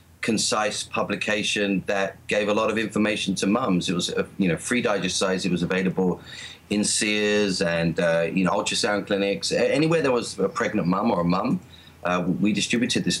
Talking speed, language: 185 wpm, English